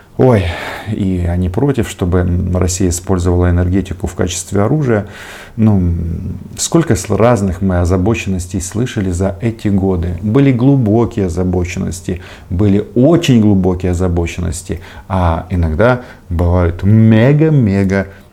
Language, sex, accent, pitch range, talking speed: Russian, male, native, 90-110 Hz, 100 wpm